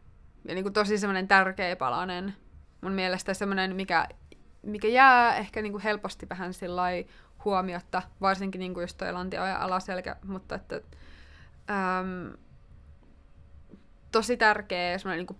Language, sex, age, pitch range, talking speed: Finnish, female, 20-39, 165-210 Hz, 135 wpm